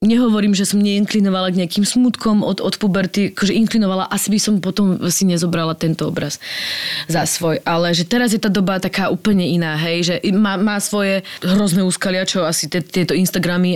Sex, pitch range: female, 170-200 Hz